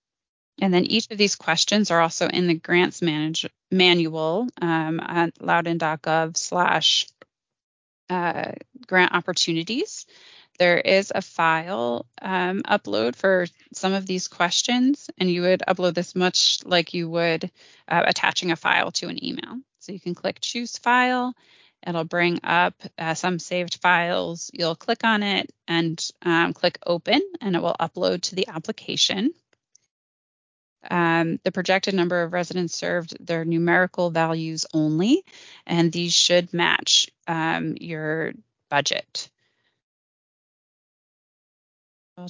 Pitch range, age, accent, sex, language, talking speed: 170-200 Hz, 20-39, American, female, English, 130 wpm